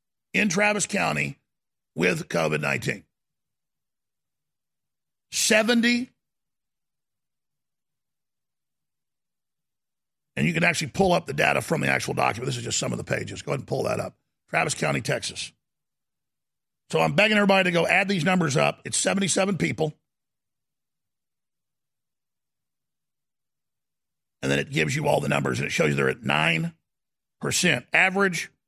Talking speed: 130 wpm